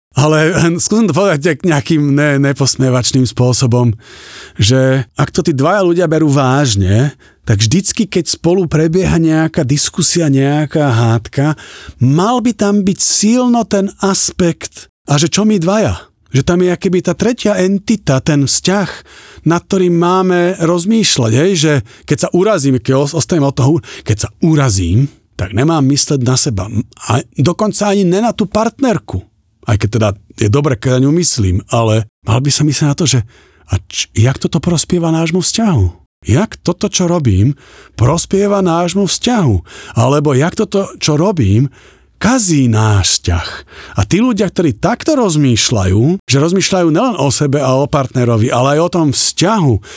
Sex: male